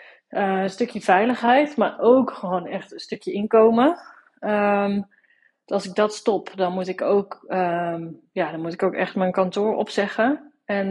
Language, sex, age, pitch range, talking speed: Dutch, female, 20-39, 185-235 Hz, 170 wpm